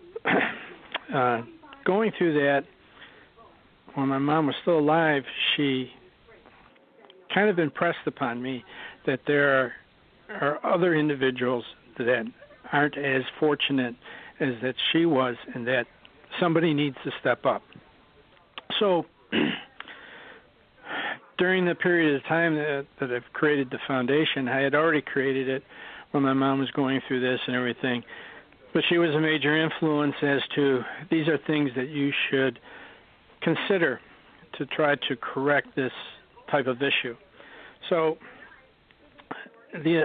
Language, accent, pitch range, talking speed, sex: English, American, 130-165 Hz, 130 wpm, male